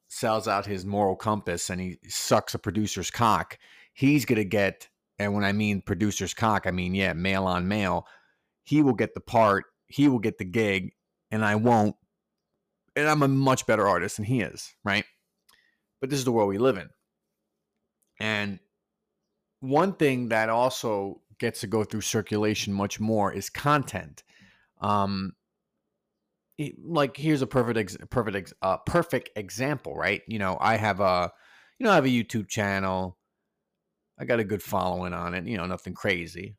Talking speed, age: 175 wpm, 30-49